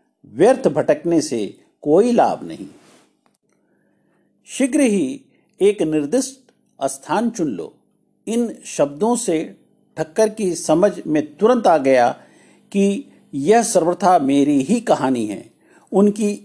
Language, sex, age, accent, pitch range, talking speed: Hindi, male, 50-69, native, 150-215 Hz, 115 wpm